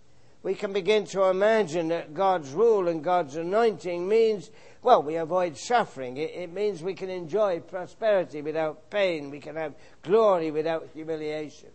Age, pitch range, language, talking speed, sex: 60-79, 140-210 Hz, English, 160 wpm, male